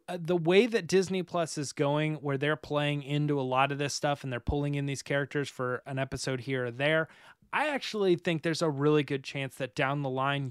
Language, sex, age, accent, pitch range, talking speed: English, male, 20-39, American, 130-155 Hz, 235 wpm